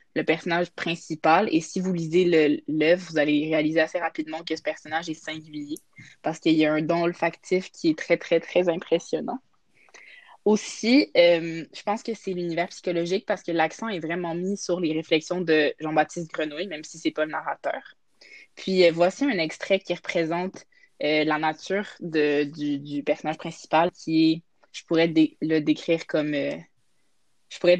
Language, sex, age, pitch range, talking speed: French, female, 20-39, 155-180 Hz, 180 wpm